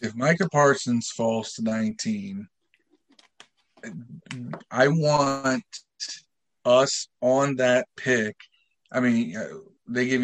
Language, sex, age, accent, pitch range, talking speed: English, male, 40-59, American, 115-150 Hz, 95 wpm